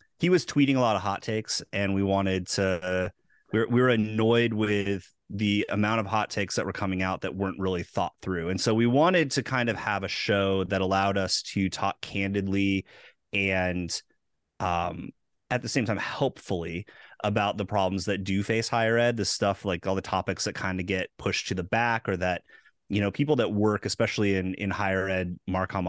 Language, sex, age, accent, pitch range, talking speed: English, male, 30-49, American, 95-110 Hz, 205 wpm